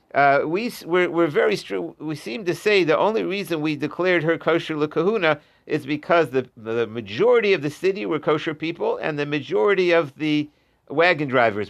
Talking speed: 185 wpm